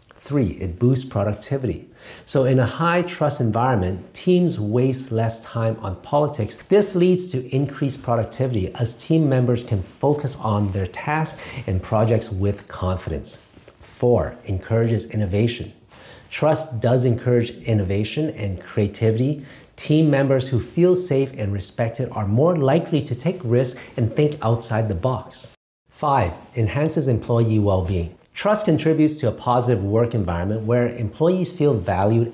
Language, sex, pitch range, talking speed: English, male, 105-140 Hz, 140 wpm